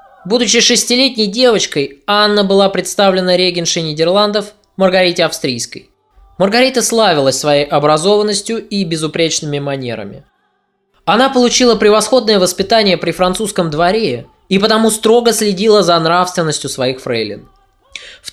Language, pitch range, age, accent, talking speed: Russian, 155-215 Hz, 20-39, native, 110 wpm